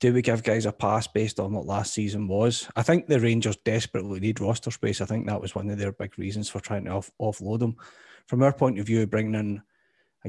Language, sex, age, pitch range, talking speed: English, male, 30-49, 105-115 Hz, 245 wpm